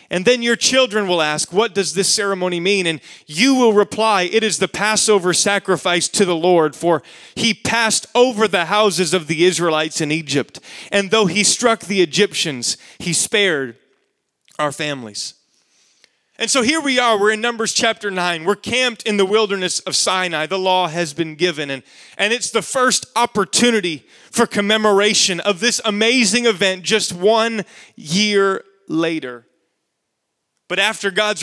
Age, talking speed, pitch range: 30-49, 160 wpm, 170-215 Hz